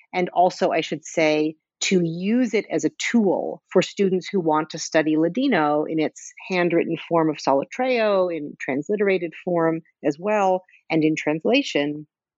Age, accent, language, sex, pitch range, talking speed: 40-59, American, English, female, 160-195 Hz, 155 wpm